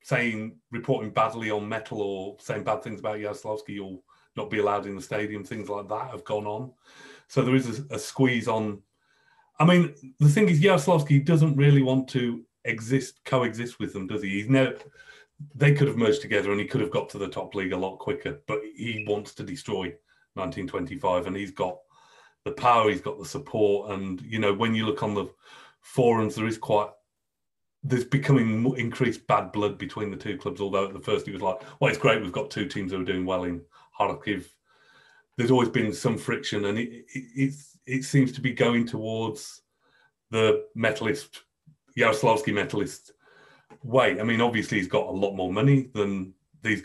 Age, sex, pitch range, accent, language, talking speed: 30-49, male, 105-130 Hz, British, English, 195 wpm